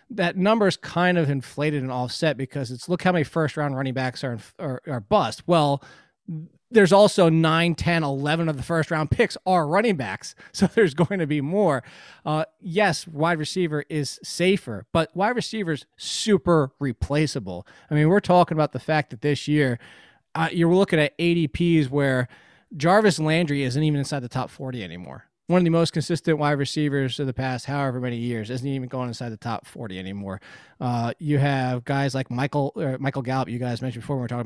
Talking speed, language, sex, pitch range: 195 wpm, English, male, 130-165 Hz